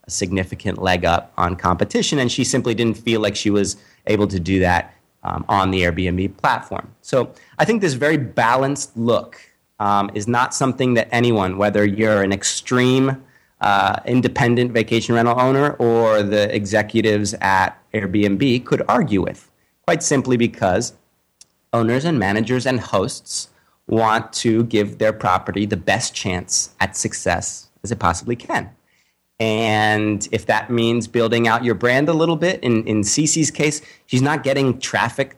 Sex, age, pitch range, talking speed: male, 30-49, 105-130 Hz, 160 wpm